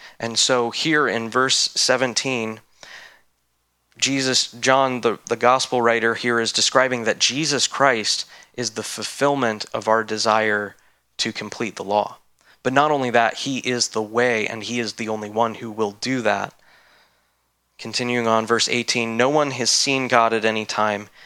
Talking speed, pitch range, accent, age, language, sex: 165 wpm, 110-130 Hz, American, 20-39, English, male